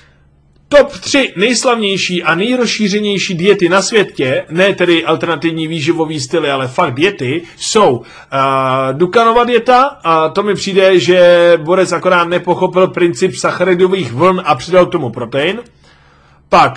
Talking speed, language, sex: 130 wpm, Czech, male